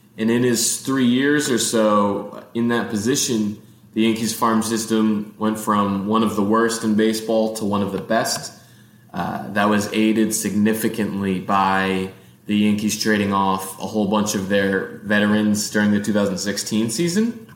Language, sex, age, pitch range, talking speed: English, male, 20-39, 105-120 Hz, 160 wpm